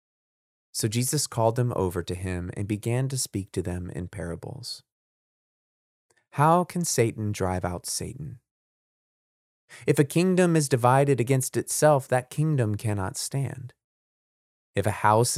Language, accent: English, American